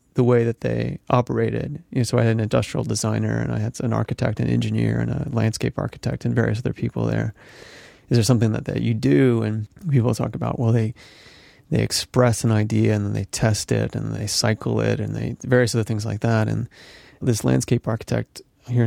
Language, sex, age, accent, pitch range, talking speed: English, male, 30-49, American, 110-125 Hz, 215 wpm